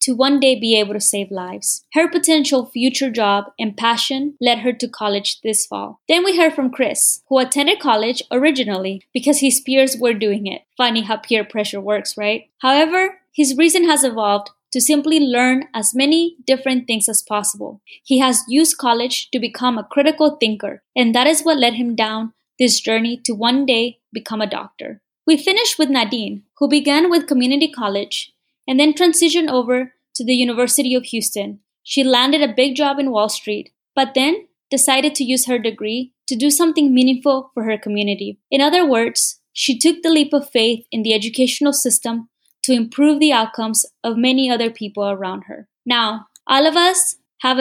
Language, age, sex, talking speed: English, 20-39, female, 185 wpm